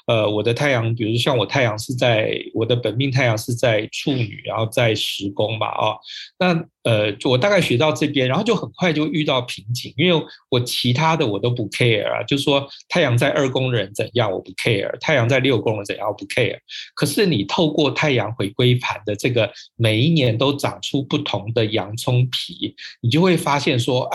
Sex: male